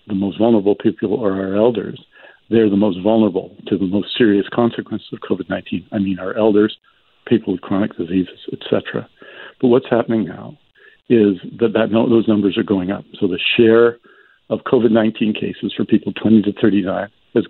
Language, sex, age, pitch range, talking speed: English, male, 60-79, 100-120 Hz, 180 wpm